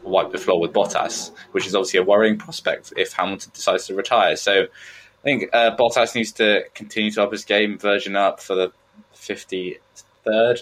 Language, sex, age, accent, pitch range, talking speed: English, male, 10-29, British, 95-115 Hz, 185 wpm